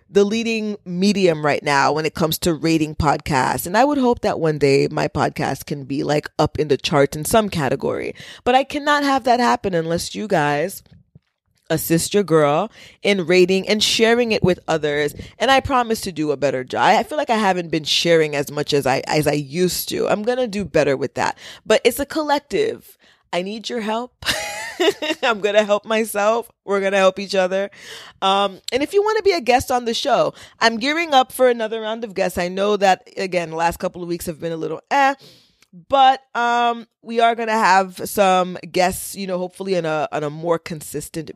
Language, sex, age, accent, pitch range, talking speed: English, female, 20-39, American, 160-230 Hz, 220 wpm